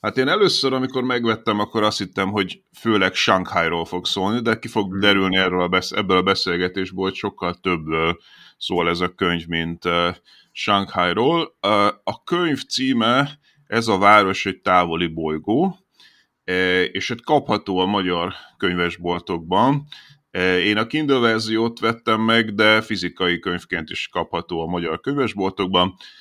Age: 30-49